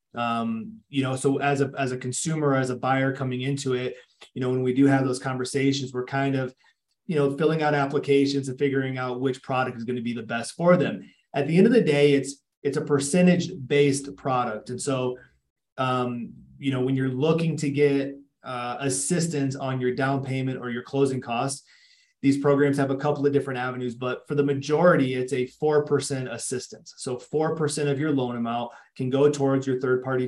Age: 30-49